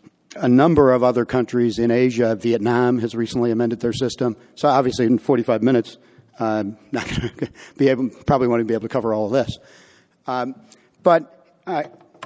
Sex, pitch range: male, 120-140 Hz